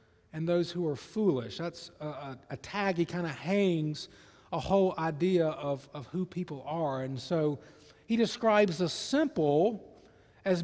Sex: male